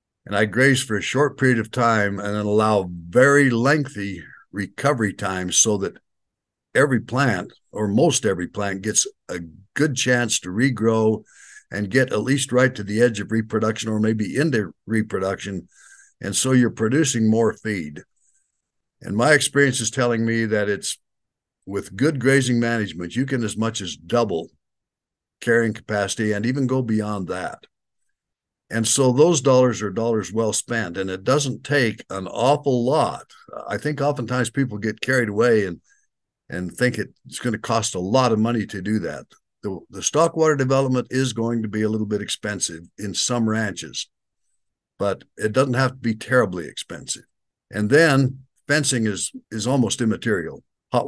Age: 60-79